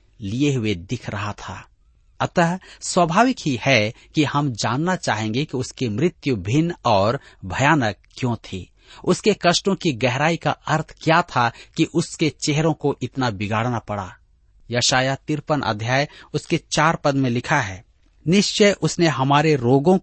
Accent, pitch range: native, 115-160 Hz